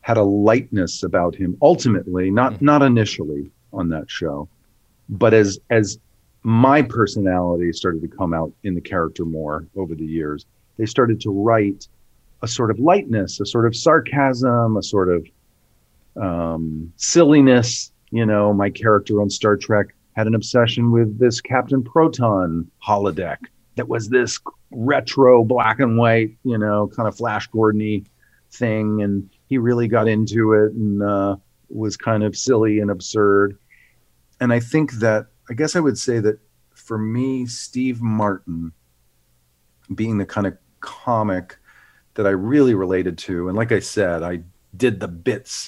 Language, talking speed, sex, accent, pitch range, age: English, 160 wpm, male, American, 95-115 Hz, 40-59